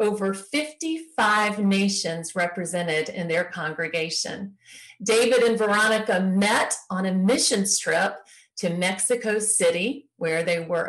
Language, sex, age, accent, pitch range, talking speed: English, female, 40-59, American, 190-235 Hz, 115 wpm